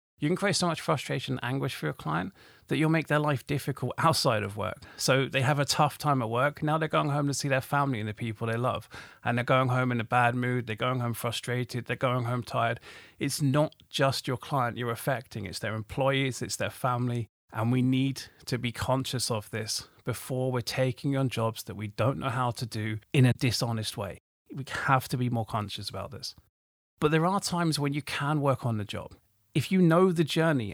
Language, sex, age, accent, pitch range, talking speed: English, male, 30-49, British, 115-145 Hz, 230 wpm